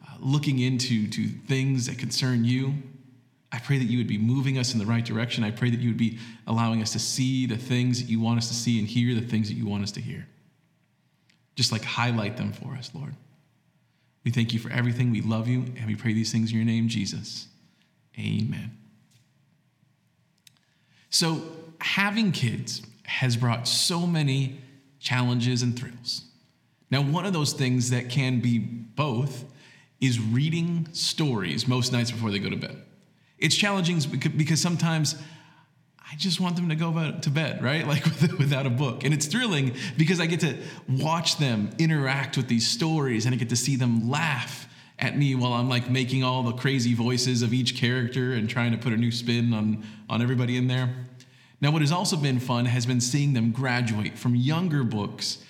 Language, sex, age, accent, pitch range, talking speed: English, male, 40-59, American, 120-145 Hz, 190 wpm